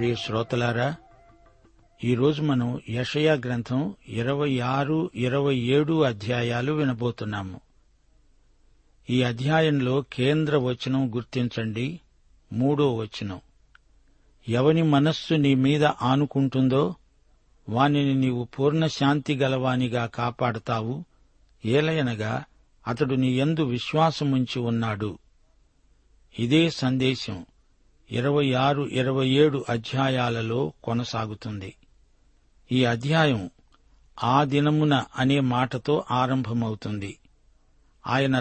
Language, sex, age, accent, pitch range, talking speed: Telugu, male, 60-79, native, 120-145 Hz, 75 wpm